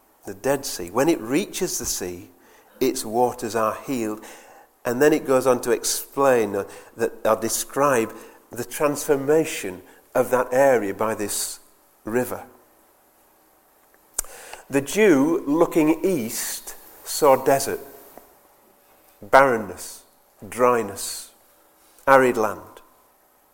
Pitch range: 110-165 Hz